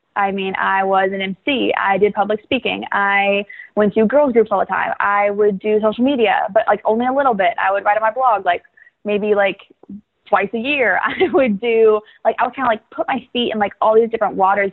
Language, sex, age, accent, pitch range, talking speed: English, female, 20-39, American, 195-230 Hz, 240 wpm